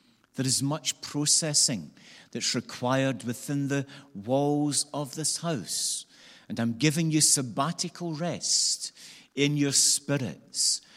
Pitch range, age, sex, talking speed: 120-145 Hz, 50-69, male, 115 wpm